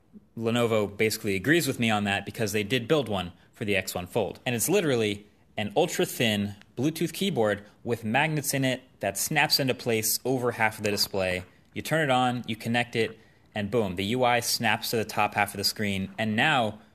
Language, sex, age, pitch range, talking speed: English, male, 30-49, 100-125 Hz, 200 wpm